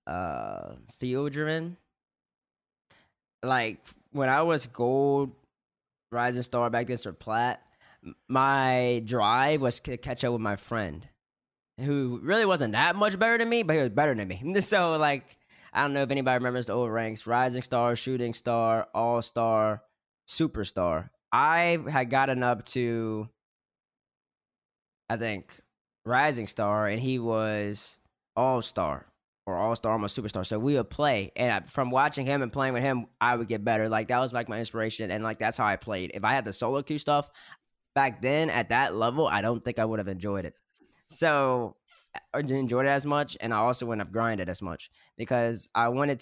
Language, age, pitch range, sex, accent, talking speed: English, 10-29, 115-140 Hz, male, American, 180 wpm